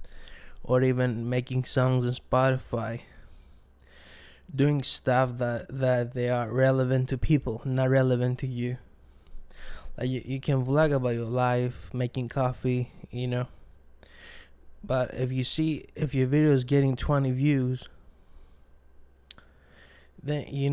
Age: 20-39